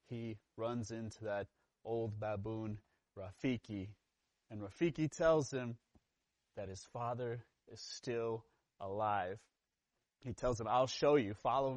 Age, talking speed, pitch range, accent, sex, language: 30-49, 120 wpm, 100-125 Hz, American, male, English